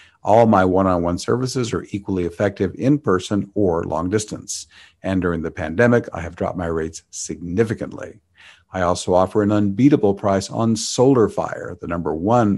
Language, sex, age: English, male, 50-69